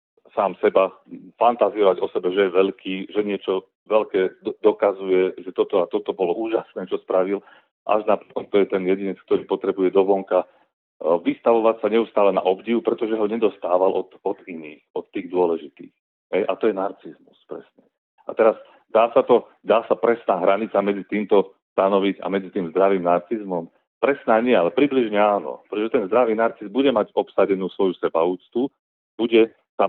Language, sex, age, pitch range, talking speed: Slovak, male, 40-59, 90-110 Hz, 165 wpm